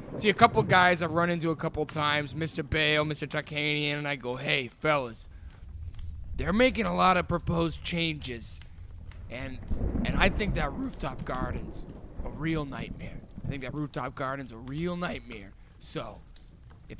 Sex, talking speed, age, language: male, 160 wpm, 20-39, English